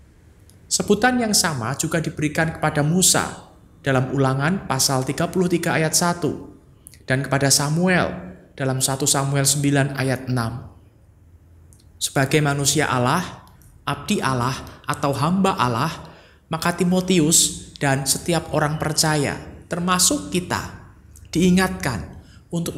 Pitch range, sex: 120-165 Hz, male